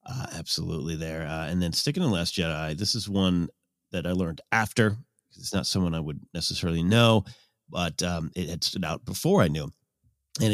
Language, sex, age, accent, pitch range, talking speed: English, male, 40-59, American, 95-120 Hz, 210 wpm